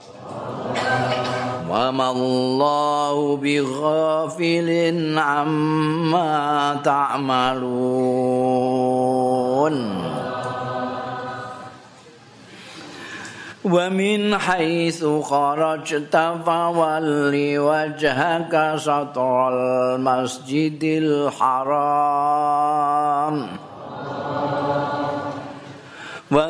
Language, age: Indonesian, 50-69